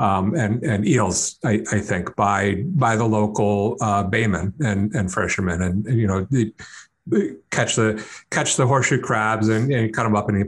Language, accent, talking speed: English, American, 195 wpm